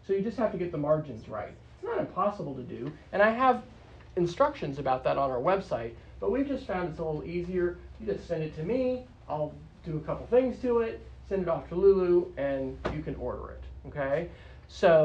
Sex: male